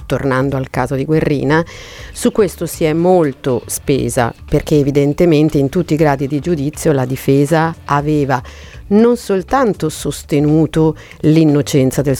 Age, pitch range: 50-69, 140-170 Hz